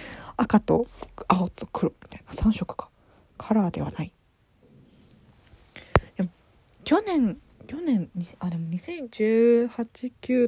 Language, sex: Japanese, female